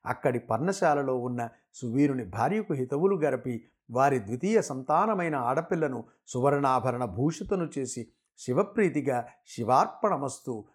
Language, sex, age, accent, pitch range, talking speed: Telugu, male, 50-69, native, 125-160 Hz, 90 wpm